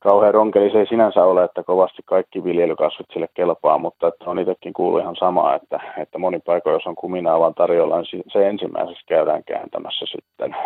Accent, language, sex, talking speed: native, Finnish, male, 190 wpm